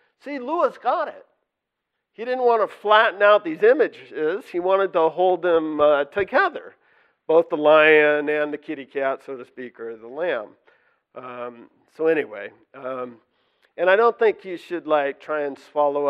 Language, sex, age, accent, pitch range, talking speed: English, male, 50-69, American, 125-200 Hz, 170 wpm